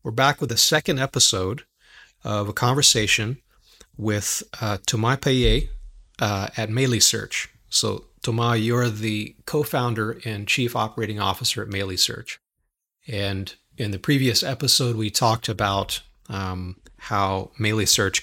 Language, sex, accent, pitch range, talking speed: English, male, American, 100-120 Hz, 135 wpm